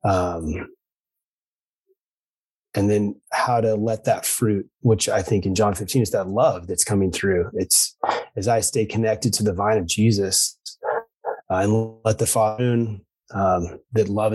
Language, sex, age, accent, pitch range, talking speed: English, male, 30-49, American, 105-130 Hz, 165 wpm